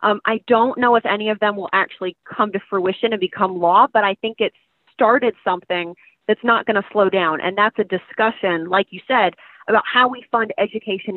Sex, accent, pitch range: female, American, 195-250 Hz